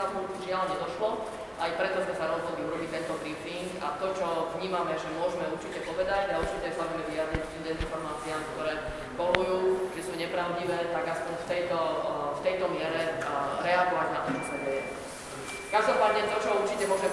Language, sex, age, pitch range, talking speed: Slovak, female, 20-39, 160-180 Hz, 175 wpm